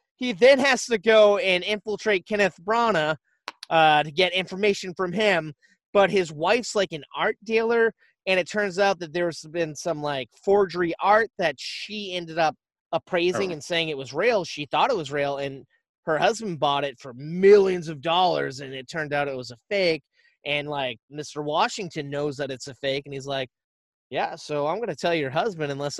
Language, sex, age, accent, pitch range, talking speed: English, male, 30-49, American, 145-200 Hz, 195 wpm